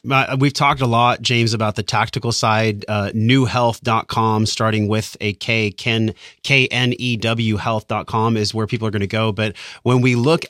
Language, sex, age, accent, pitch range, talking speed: English, male, 30-49, American, 110-140 Hz, 160 wpm